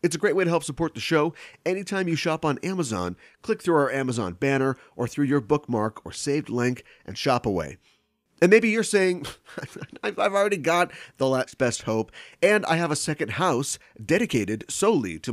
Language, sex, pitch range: English, male, 115-170 Hz